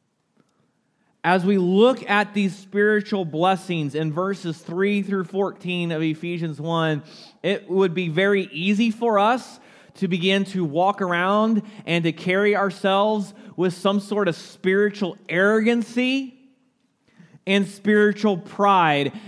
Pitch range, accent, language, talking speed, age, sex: 180-210 Hz, American, English, 125 wpm, 30-49, male